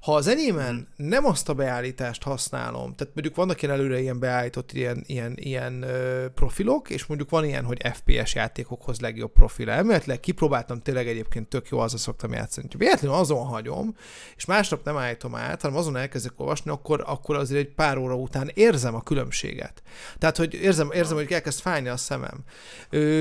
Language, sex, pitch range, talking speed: Hungarian, male, 125-160 Hz, 175 wpm